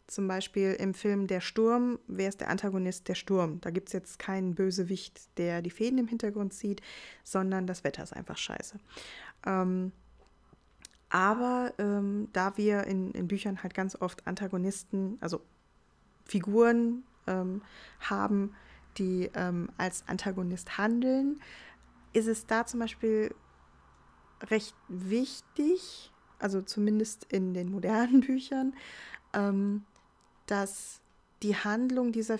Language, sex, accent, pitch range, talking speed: German, female, German, 185-225 Hz, 125 wpm